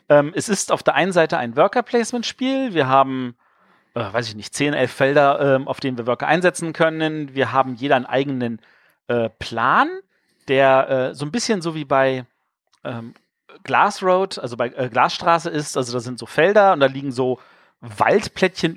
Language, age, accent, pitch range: German, 40-59, German, 130-170 Hz